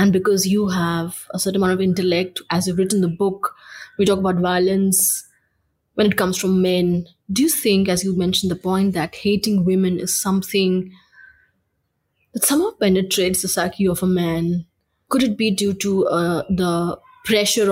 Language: English